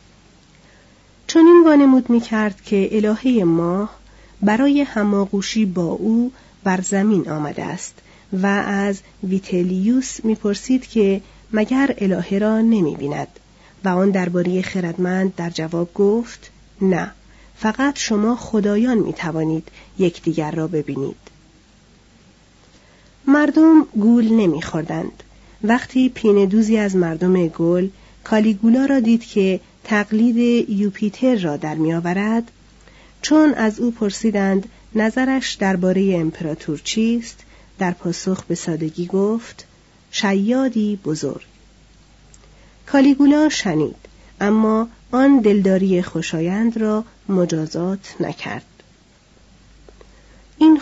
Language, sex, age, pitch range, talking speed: Persian, female, 40-59, 185-225 Hz, 100 wpm